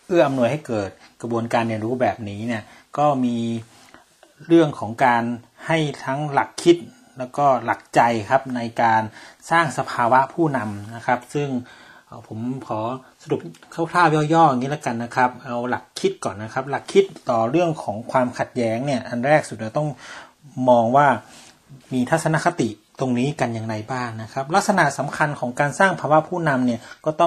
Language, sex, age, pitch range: Thai, male, 30-49, 115-150 Hz